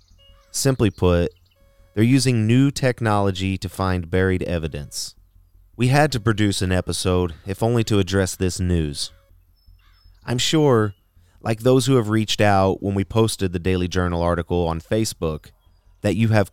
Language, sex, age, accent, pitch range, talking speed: English, male, 30-49, American, 90-110 Hz, 155 wpm